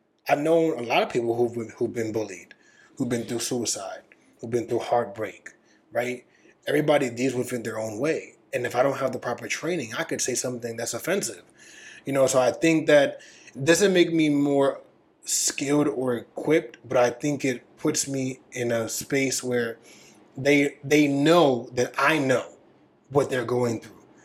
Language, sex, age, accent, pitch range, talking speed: English, male, 20-39, American, 125-160 Hz, 180 wpm